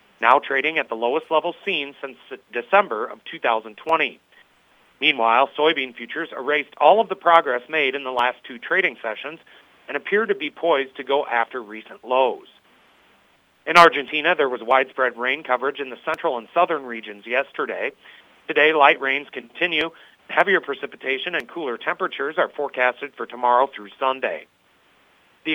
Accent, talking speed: American, 155 wpm